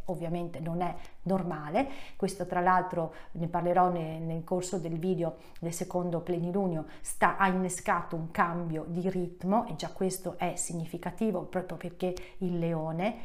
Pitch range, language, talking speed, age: 170-200 Hz, Italian, 150 wpm, 40-59